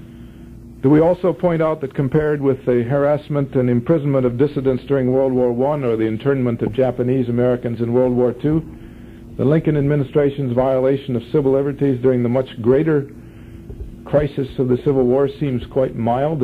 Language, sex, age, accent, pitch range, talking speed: English, male, 50-69, American, 120-150 Hz, 170 wpm